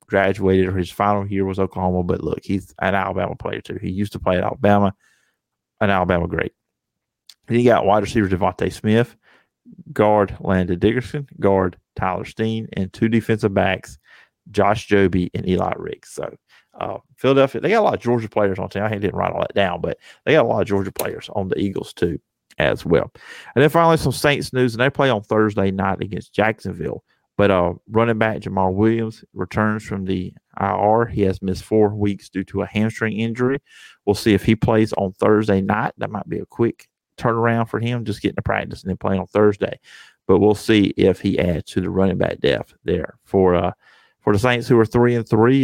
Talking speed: 210 wpm